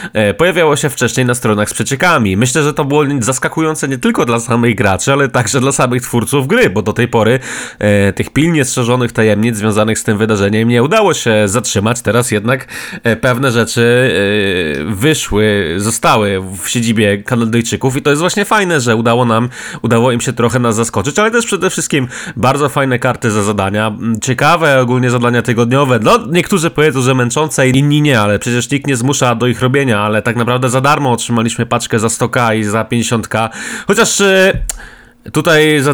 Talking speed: 180 wpm